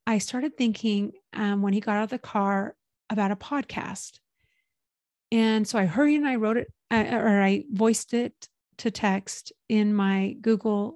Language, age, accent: English, 30-49, American